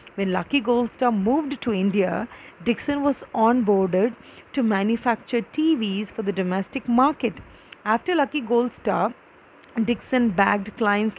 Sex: female